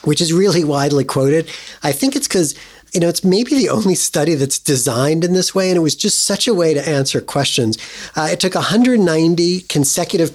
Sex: male